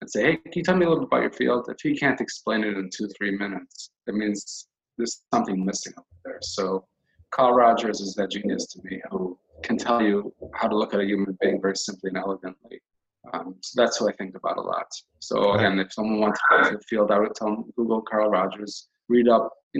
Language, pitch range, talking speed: English, 100-125 Hz, 245 wpm